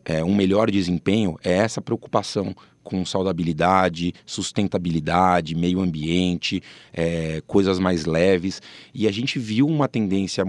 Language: Portuguese